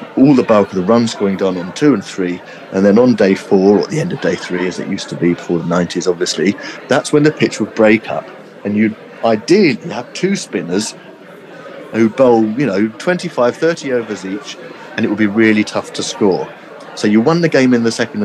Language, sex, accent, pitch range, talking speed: English, male, British, 100-160 Hz, 230 wpm